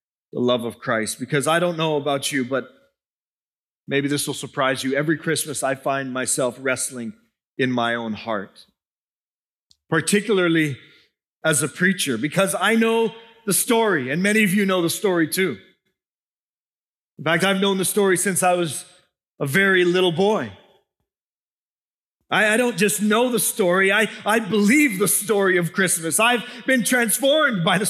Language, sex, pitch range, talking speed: English, male, 175-245 Hz, 160 wpm